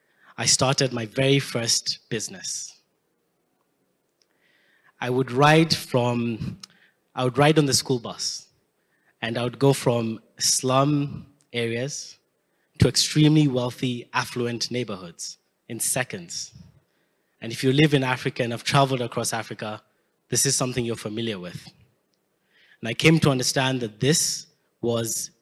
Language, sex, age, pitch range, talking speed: English, male, 20-39, 115-145 Hz, 130 wpm